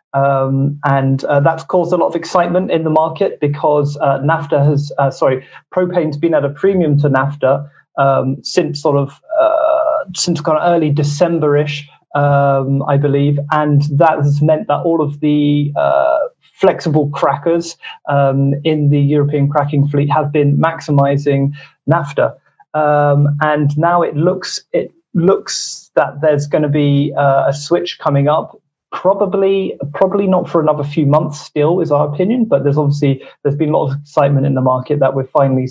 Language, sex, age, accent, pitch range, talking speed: English, male, 30-49, British, 140-170 Hz, 170 wpm